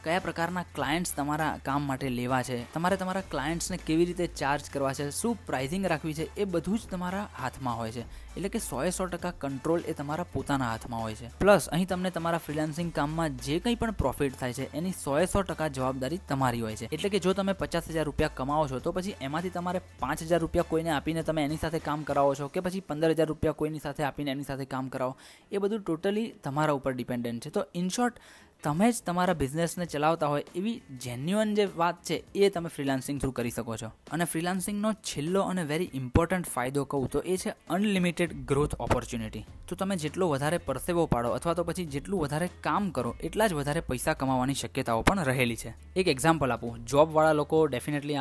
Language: Gujarati